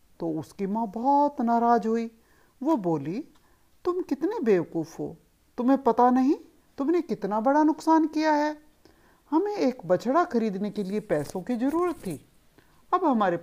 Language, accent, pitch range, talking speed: Hindi, native, 185-310 Hz, 145 wpm